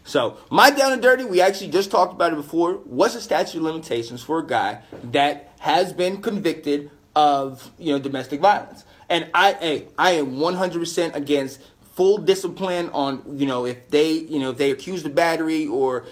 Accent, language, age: American, English, 30-49